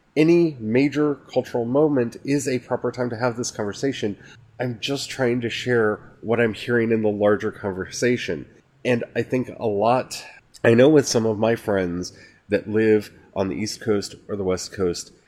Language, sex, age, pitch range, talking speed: English, male, 30-49, 95-120 Hz, 180 wpm